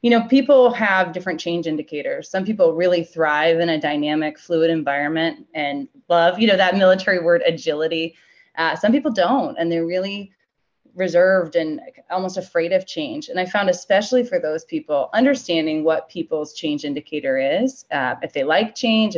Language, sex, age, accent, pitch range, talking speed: English, female, 20-39, American, 160-220 Hz, 170 wpm